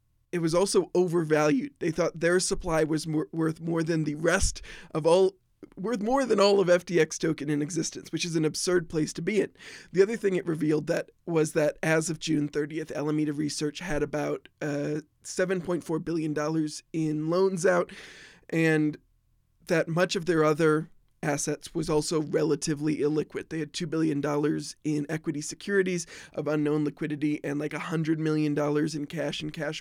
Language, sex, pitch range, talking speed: English, male, 150-180 Hz, 170 wpm